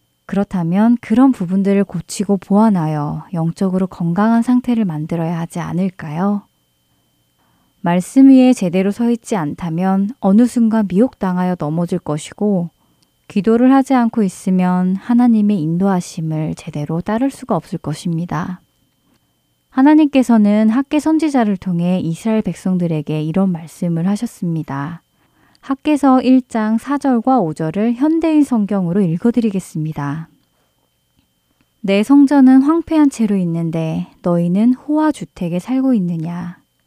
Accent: native